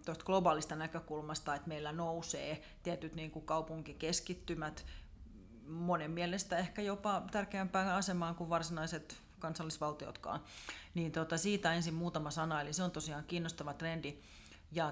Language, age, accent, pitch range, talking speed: Finnish, 30-49, native, 150-170 Hz, 130 wpm